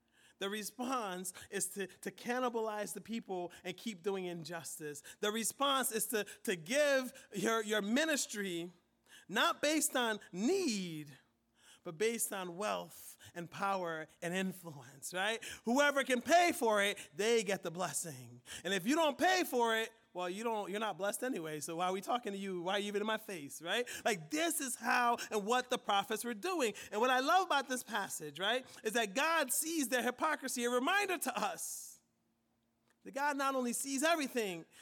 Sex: male